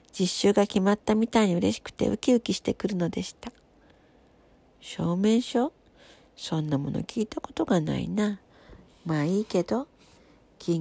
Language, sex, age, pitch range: Japanese, female, 50-69, 180-230 Hz